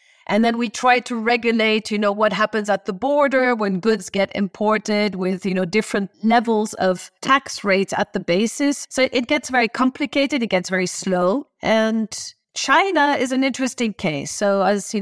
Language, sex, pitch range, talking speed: English, female, 195-245 Hz, 185 wpm